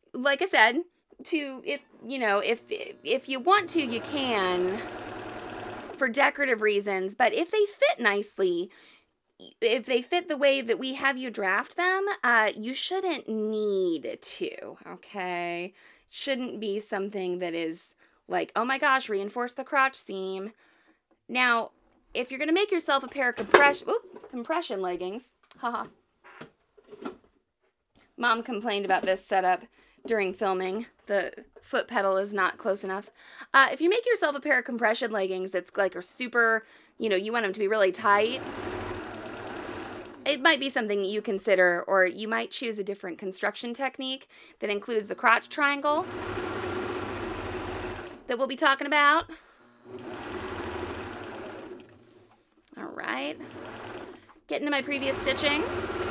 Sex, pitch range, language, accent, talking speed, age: female, 200-305 Hz, English, American, 140 wpm, 20-39